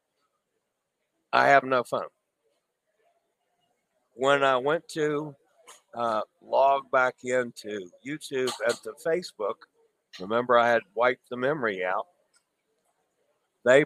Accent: American